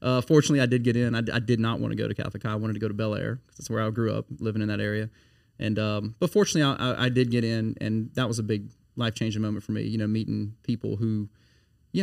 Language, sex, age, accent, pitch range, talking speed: English, male, 30-49, American, 110-125 Hz, 295 wpm